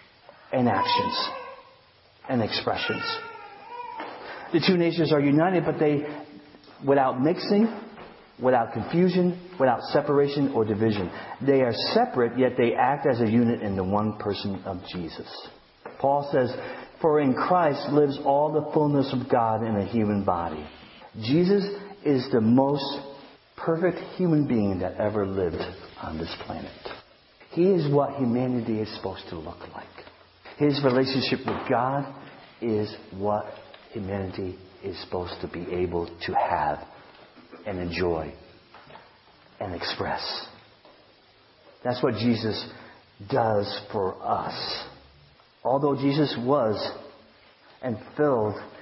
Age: 50-69